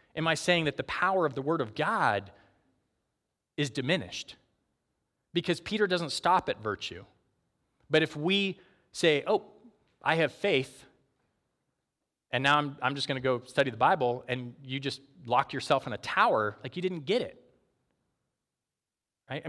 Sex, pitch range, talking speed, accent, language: male, 125-170 Hz, 160 wpm, American, English